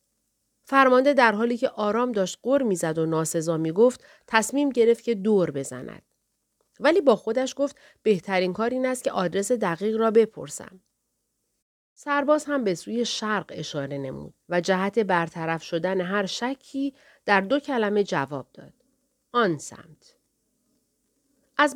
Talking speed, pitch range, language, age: 140 wpm, 180-255 Hz, Persian, 40-59